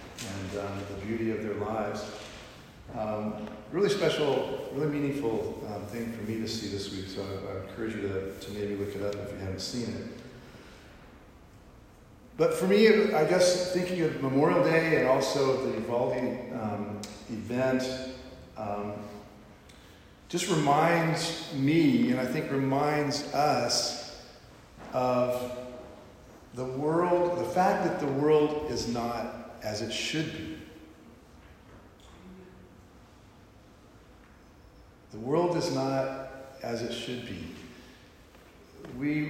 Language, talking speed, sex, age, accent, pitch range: English, 125 wpm, male, 40-59, American, 100-140 Hz